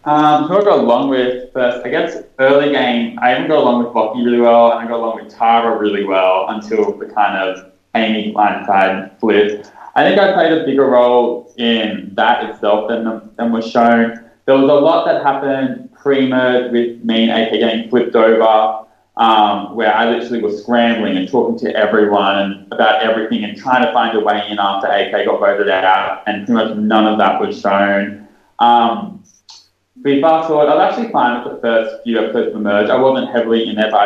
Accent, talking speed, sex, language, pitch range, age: Australian, 210 wpm, male, English, 105-125 Hz, 20-39